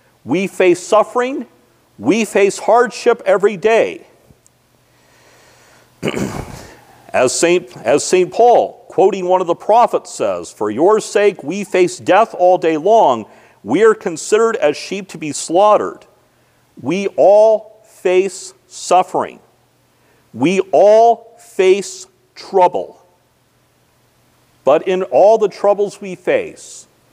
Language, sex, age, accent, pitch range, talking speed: English, male, 50-69, American, 190-260 Hz, 115 wpm